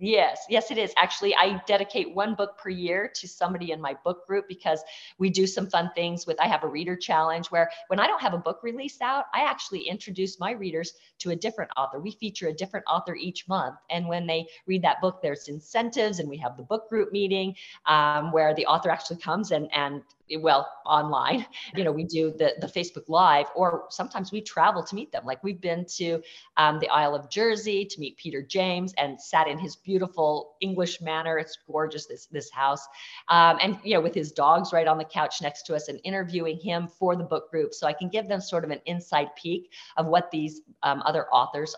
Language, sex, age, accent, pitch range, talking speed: English, female, 40-59, American, 155-190 Hz, 225 wpm